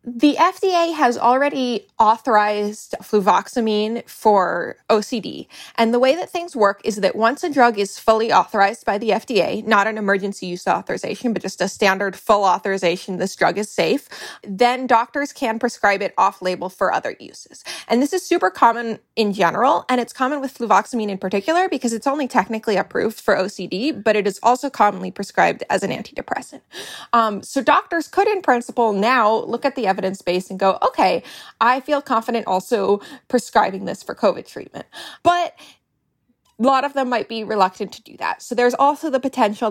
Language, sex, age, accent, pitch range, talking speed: English, female, 20-39, American, 195-245 Hz, 180 wpm